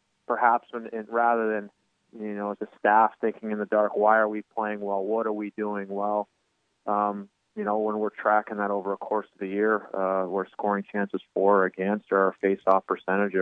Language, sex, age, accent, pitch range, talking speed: English, male, 20-39, American, 95-110 Hz, 205 wpm